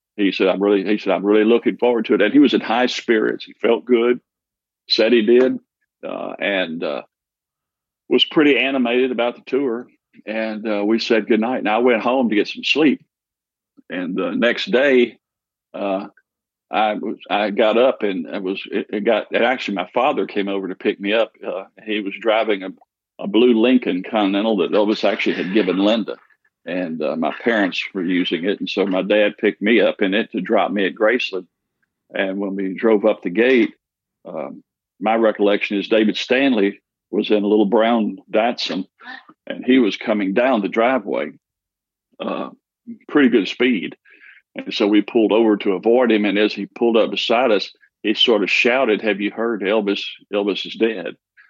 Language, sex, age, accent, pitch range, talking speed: English, male, 50-69, American, 100-120 Hz, 190 wpm